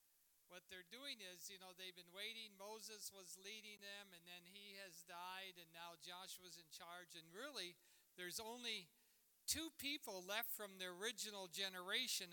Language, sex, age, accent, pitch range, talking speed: English, male, 60-79, American, 170-215 Hz, 165 wpm